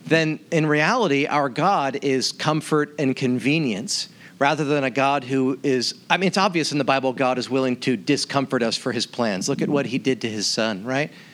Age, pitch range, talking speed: 40-59, 135-165 Hz, 210 wpm